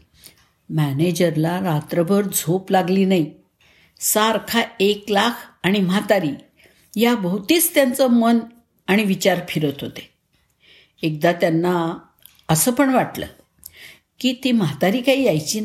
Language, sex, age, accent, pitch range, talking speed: Marathi, female, 60-79, native, 170-230 Hz, 105 wpm